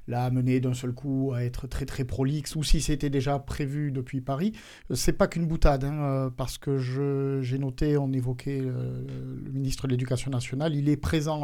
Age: 50-69